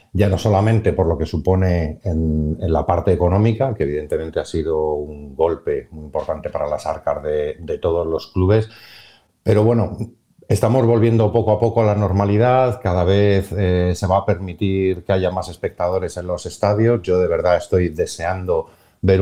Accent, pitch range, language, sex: Spanish, 85-105 Hz, Spanish, male